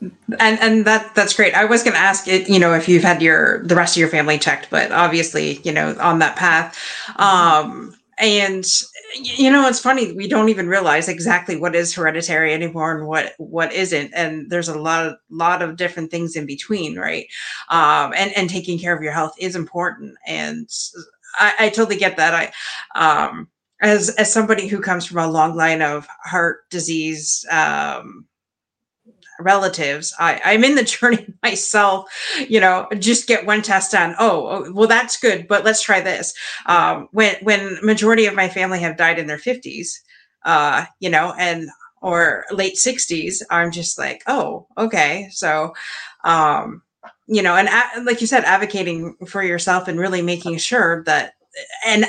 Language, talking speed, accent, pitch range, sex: English, 180 wpm, American, 170-220 Hz, female